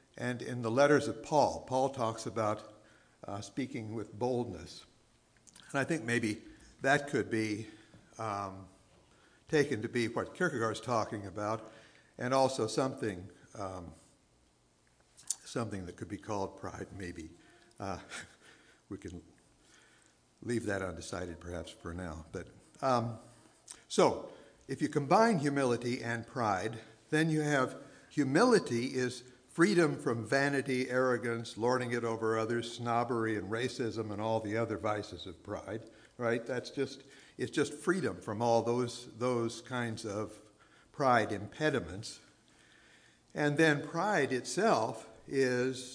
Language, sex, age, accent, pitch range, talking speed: English, male, 60-79, American, 105-135 Hz, 130 wpm